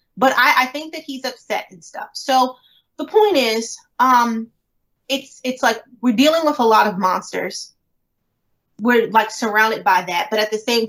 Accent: American